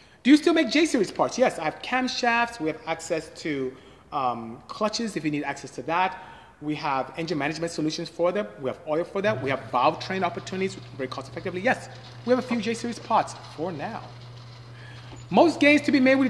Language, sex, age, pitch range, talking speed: English, male, 30-49, 130-205 Hz, 215 wpm